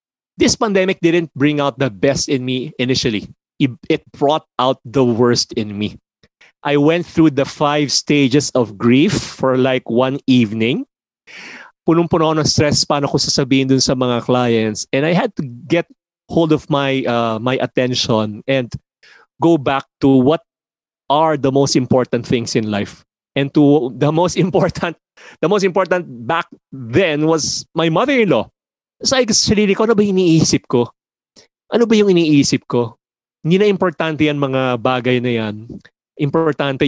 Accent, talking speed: Filipino, 155 wpm